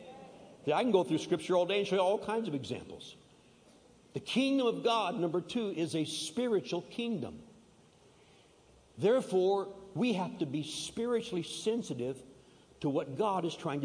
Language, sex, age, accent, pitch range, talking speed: English, male, 60-79, American, 140-210 Hz, 155 wpm